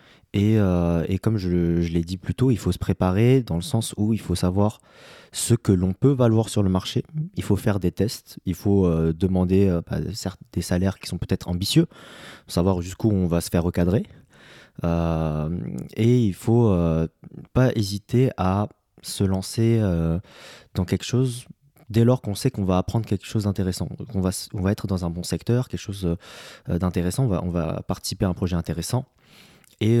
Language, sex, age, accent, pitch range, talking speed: English, male, 20-39, French, 90-115 Hz, 200 wpm